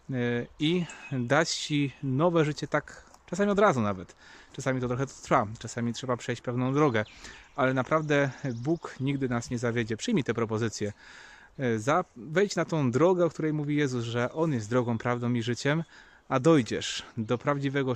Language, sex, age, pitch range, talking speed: Polish, male, 30-49, 120-145 Hz, 160 wpm